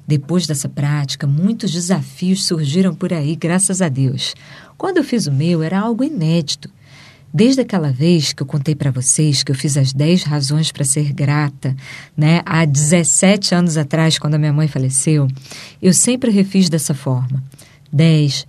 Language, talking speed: Portuguese, 170 wpm